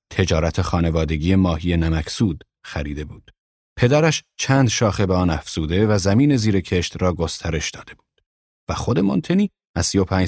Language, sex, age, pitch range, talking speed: Persian, male, 40-59, 85-115 Hz, 145 wpm